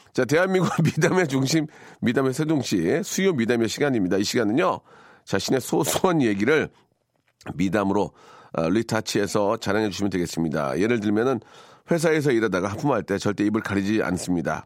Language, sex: Korean, male